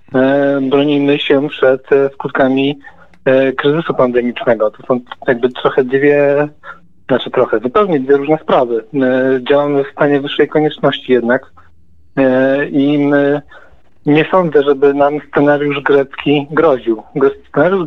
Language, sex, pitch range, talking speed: Polish, male, 130-155 Hz, 105 wpm